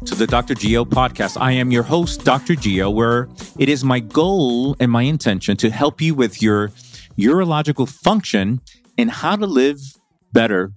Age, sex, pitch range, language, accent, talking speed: 30-49, male, 110-155 Hz, English, American, 175 wpm